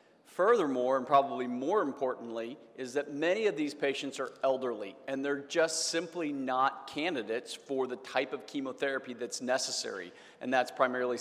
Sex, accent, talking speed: male, American, 155 wpm